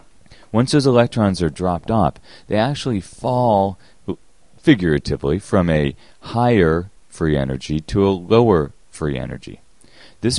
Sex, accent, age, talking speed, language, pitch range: male, American, 30-49, 120 wpm, English, 75-105 Hz